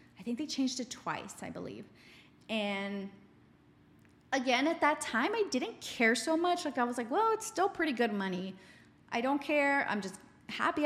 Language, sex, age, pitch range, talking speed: English, female, 20-39, 190-250 Hz, 190 wpm